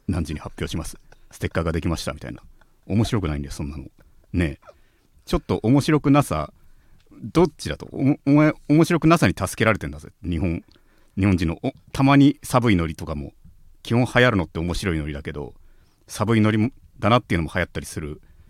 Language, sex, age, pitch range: Japanese, male, 40-59, 85-120 Hz